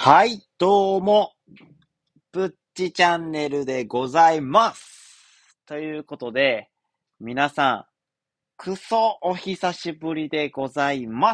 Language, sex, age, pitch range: Japanese, male, 40-59, 120-190 Hz